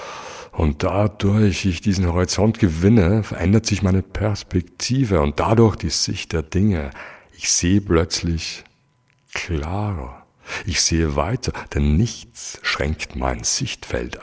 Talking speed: 120 wpm